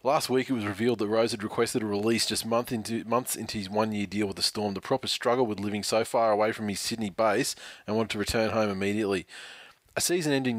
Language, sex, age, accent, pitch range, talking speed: English, male, 20-39, Australian, 100-115 Hz, 225 wpm